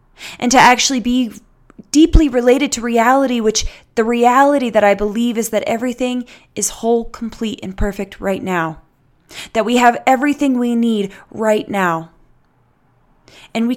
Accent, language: American, English